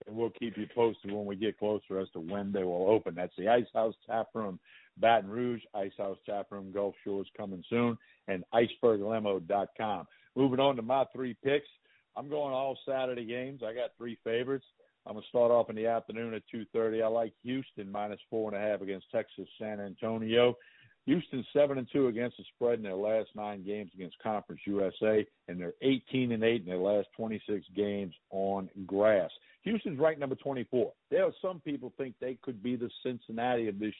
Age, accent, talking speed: 50-69, American, 190 wpm